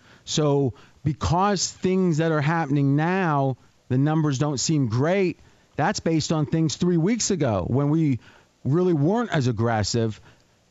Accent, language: American, English